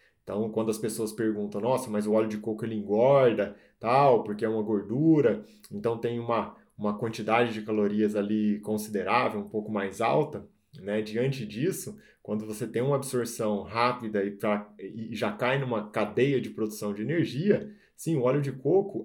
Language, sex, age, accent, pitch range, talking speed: Portuguese, male, 20-39, Brazilian, 110-140 Hz, 175 wpm